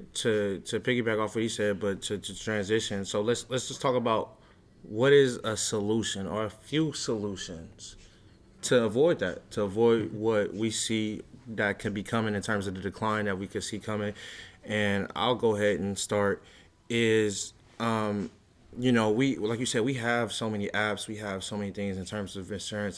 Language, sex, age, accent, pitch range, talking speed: English, male, 20-39, American, 100-115 Hz, 195 wpm